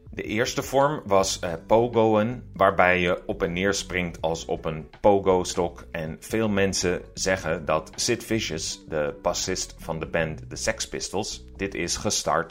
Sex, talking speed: male, 160 wpm